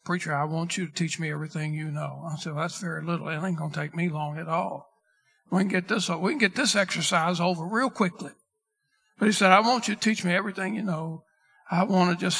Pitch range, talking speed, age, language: 165-195 Hz, 255 wpm, 60-79, English